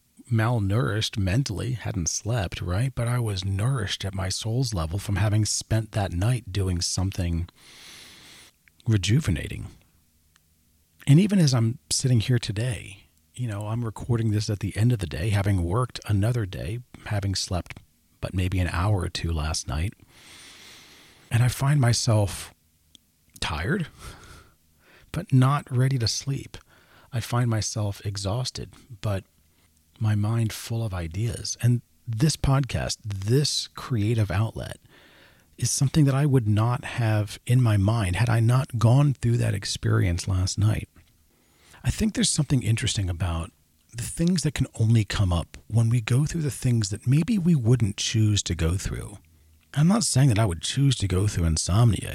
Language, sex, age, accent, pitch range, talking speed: English, male, 40-59, American, 95-125 Hz, 155 wpm